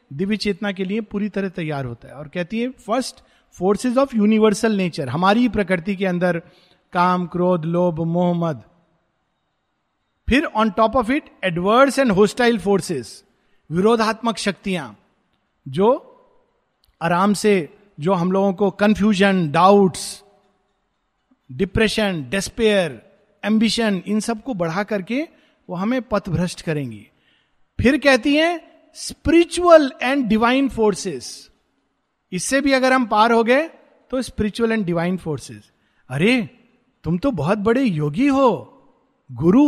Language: Hindi